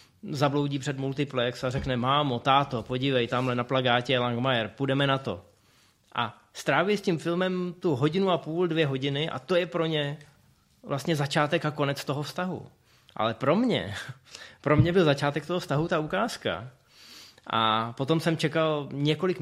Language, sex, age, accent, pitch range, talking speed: Czech, male, 30-49, native, 125-160 Hz, 165 wpm